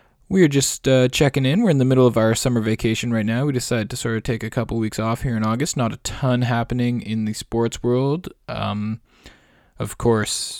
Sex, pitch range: male, 105-125 Hz